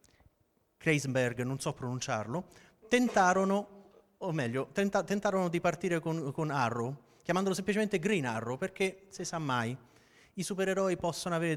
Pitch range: 130-180 Hz